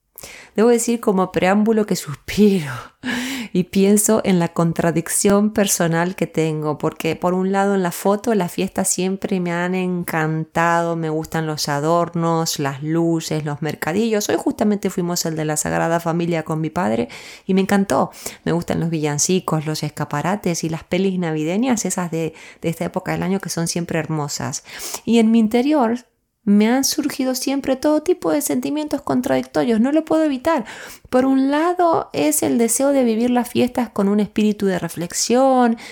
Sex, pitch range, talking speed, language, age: female, 165-240 Hz, 170 wpm, Spanish, 20-39